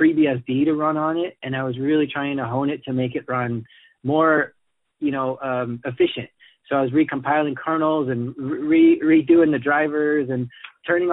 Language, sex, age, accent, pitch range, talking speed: English, male, 30-49, American, 130-155 Hz, 190 wpm